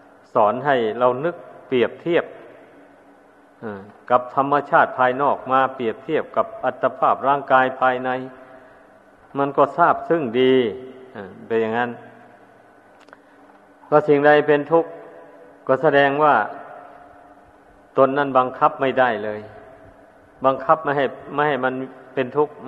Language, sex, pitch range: Thai, male, 125-145 Hz